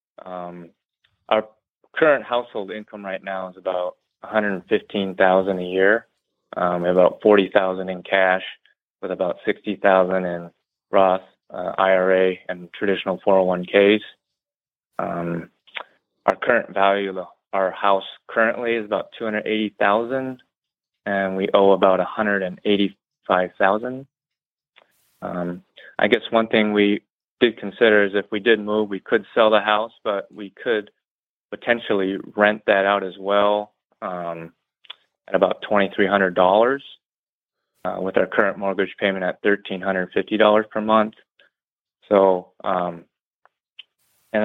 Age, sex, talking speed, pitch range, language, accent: 20-39, male, 125 wpm, 95-105 Hz, English, American